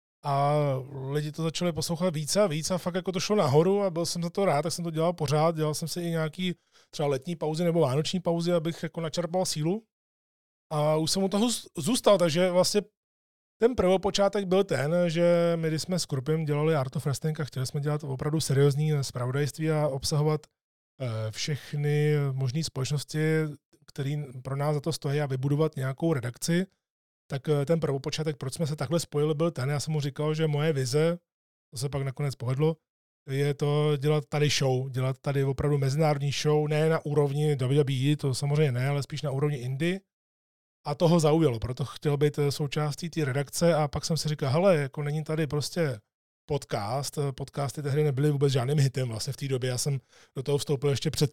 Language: Czech